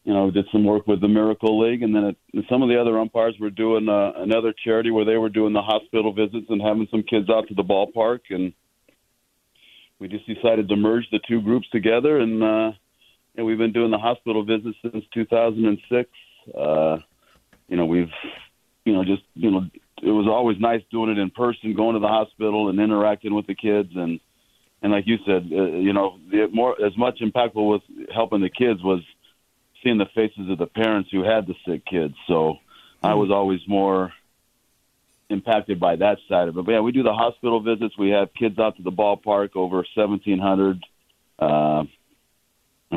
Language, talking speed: English, 200 wpm